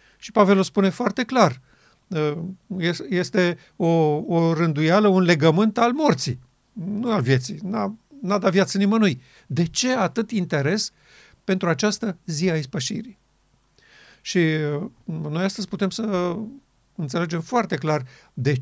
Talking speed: 130 wpm